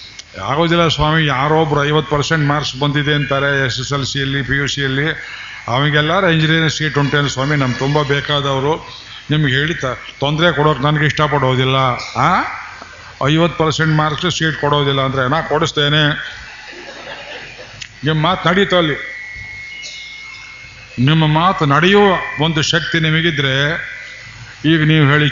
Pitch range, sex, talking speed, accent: 135-160 Hz, male, 130 wpm, native